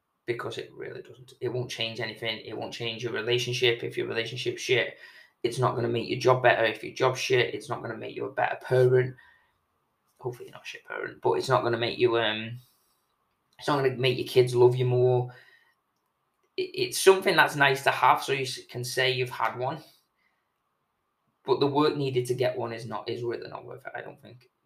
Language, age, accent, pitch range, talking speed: English, 20-39, British, 120-135 Hz, 225 wpm